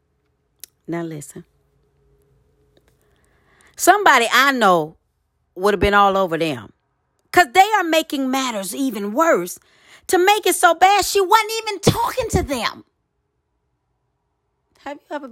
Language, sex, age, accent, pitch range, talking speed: English, female, 40-59, American, 195-310 Hz, 125 wpm